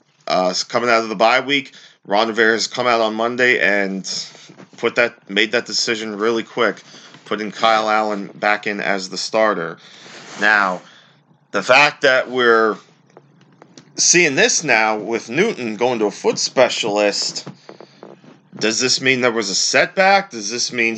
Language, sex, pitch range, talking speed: English, male, 100-130 Hz, 155 wpm